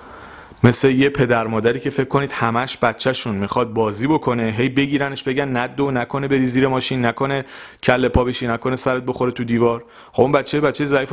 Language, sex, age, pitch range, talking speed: Persian, male, 30-49, 110-135 Hz, 180 wpm